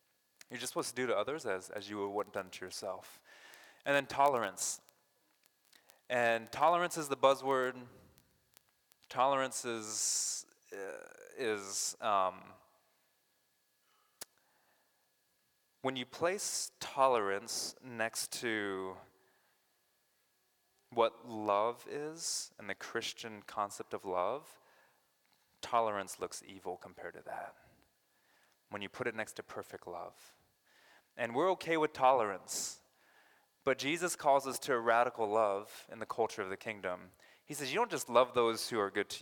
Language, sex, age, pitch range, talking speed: English, male, 20-39, 100-135 Hz, 130 wpm